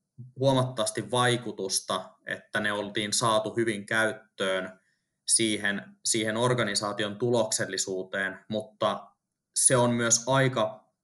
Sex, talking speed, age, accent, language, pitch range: male, 90 wpm, 20-39, native, Finnish, 105-125 Hz